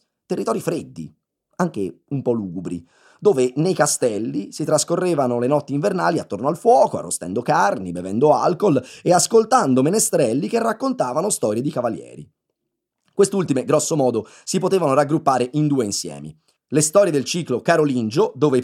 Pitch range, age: 115-170 Hz, 30-49